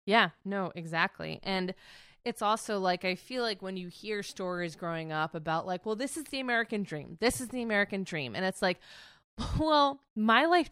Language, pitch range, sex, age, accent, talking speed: English, 170-220 Hz, female, 20-39, American, 195 wpm